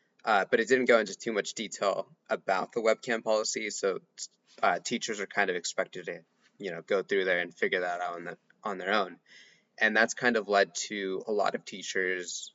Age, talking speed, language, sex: 20-39, 215 wpm, English, male